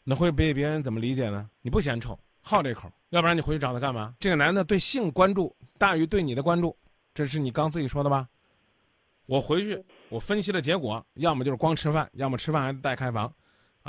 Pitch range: 125-185 Hz